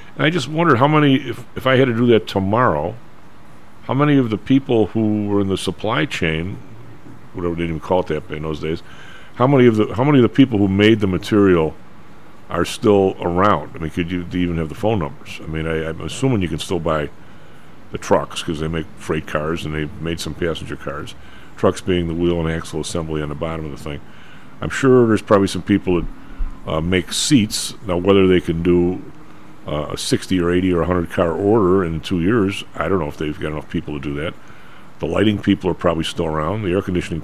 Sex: male